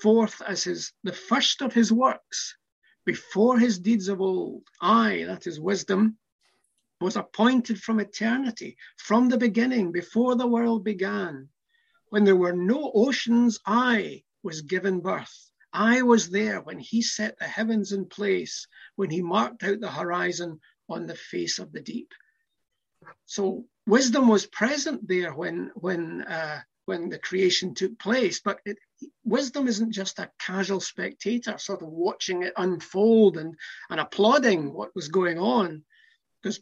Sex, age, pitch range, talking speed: male, 60-79, 185-230 Hz, 150 wpm